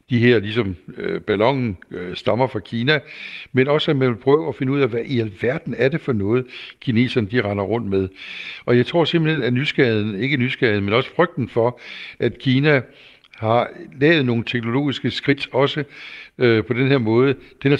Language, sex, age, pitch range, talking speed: Danish, male, 60-79, 110-140 Hz, 190 wpm